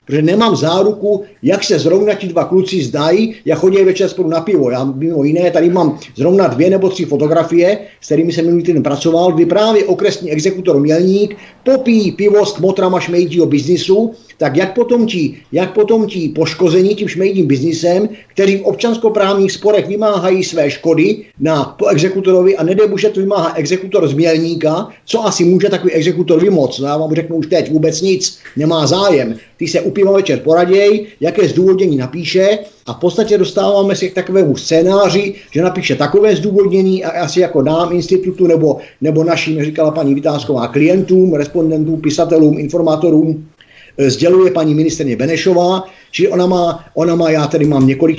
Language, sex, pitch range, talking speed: Czech, male, 155-190 Hz, 160 wpm